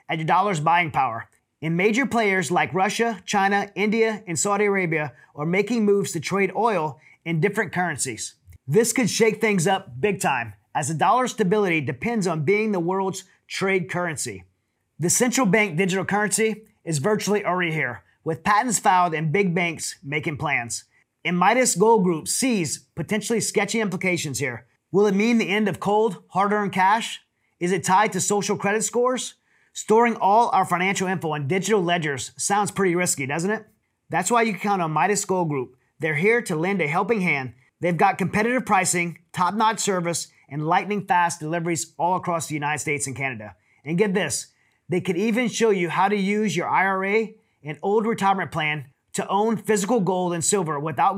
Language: English